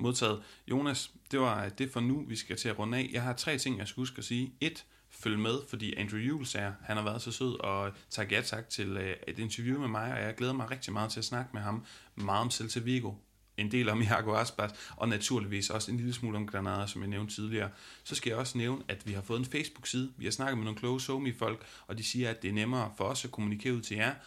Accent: native